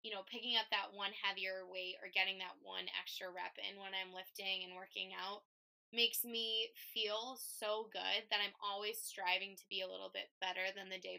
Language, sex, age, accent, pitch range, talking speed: English, female, 20-39, American, 185-225 Hz, 210 wpm